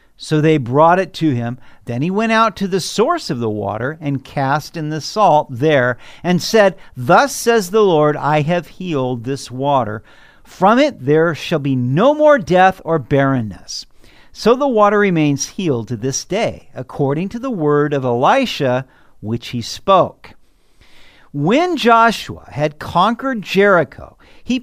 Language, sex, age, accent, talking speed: English, male, 50-69, American, 160 wpm